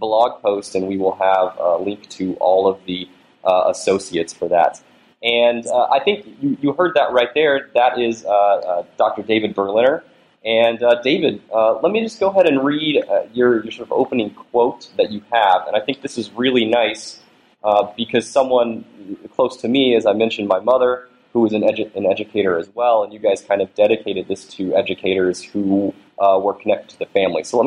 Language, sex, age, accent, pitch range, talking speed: English, male, 20-39, American, 100-125 Hz, 215 wpm